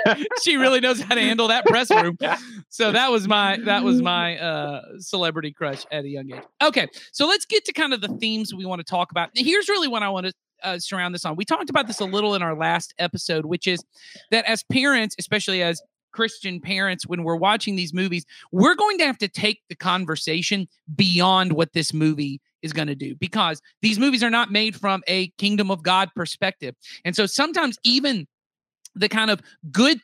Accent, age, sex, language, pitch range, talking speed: American, 30-49, male, English, 170-220 Hz, 215 wpm